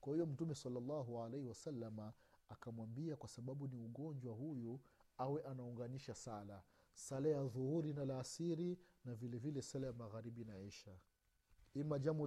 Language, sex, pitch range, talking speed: Swahili, male, 115-190 Hz, 150 wpm